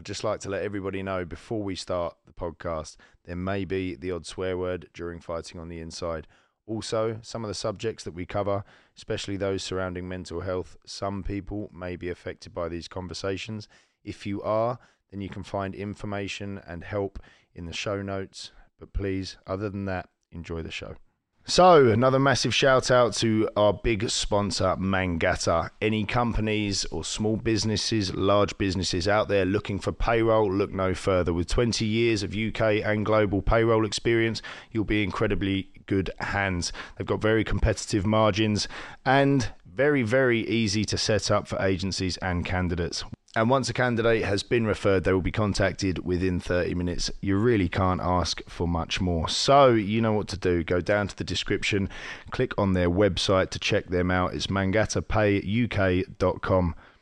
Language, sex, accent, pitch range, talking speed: English, male, British, 90-110 Hz, 170 wpm